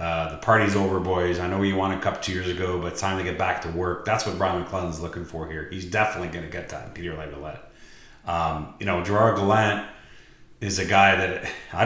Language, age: English, 30-49